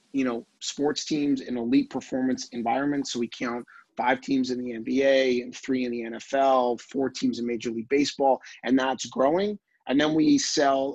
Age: 30-49